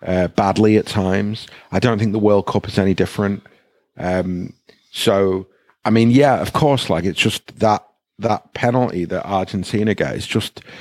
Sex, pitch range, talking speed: male, 95-115 Hz, 165 wpm